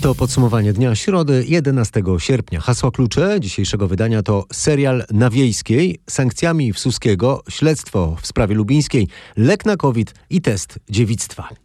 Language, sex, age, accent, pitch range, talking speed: Polish, male, 40-59, native, 95-135 Hz, 135 wpm